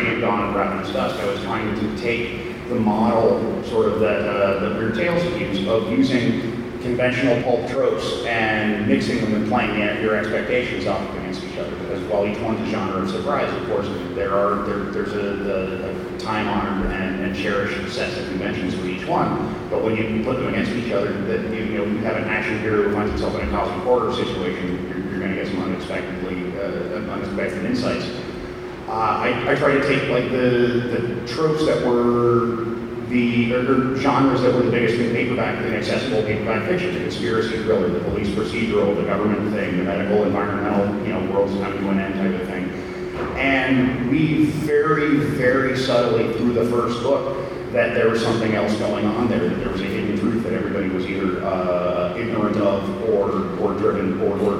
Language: English